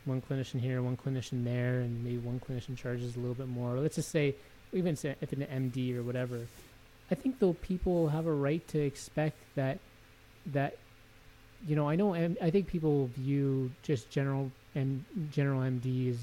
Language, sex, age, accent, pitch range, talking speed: English, male, 20-39, American, 125-145 Hz, 190 wpm